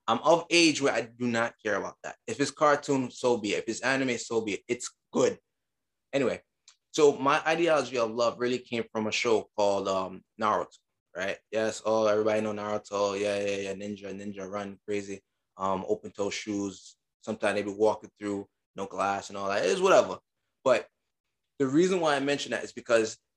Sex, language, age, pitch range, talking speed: male, English, 20-39, 100-120 Hz, 195 wpm